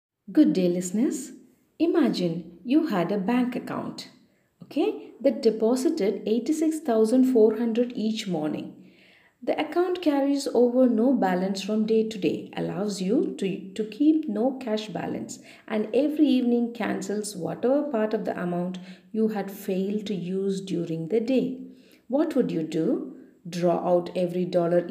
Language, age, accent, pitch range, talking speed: English, 50-69, Indian, 180-255 Hz, 140 wpm